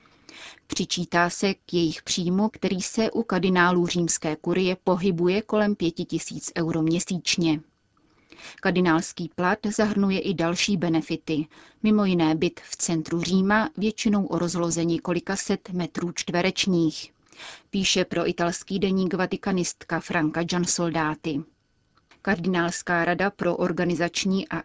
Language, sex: Czech, female